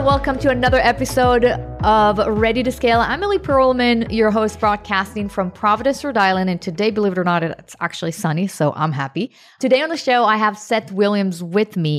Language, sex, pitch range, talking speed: English, female, 165-215 Hz, 200 wpm